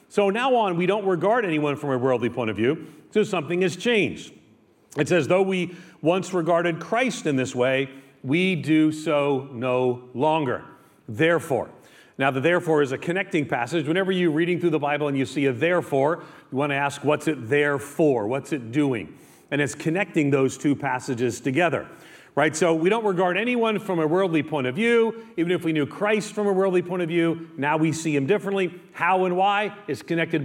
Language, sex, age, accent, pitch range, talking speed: English, male, 40-59, American, 145-185 Hz, 200 wpm